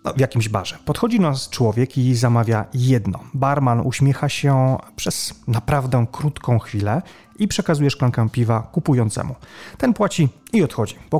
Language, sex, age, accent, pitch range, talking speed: Polish, male, 30-49, native, 120-150 Hz, 145 wpm